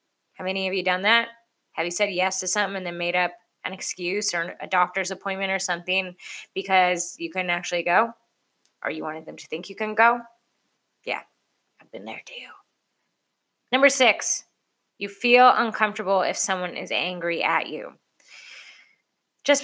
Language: English